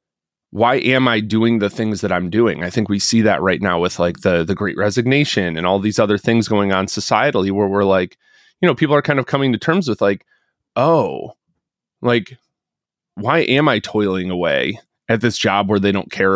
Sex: male